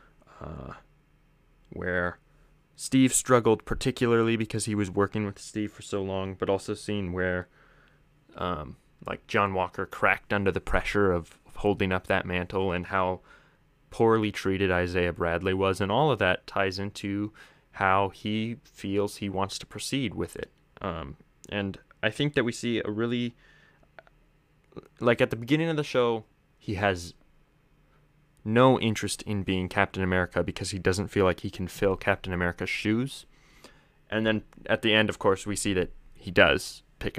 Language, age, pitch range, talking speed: English, 20-39, 95-115 Hz, 165 wpm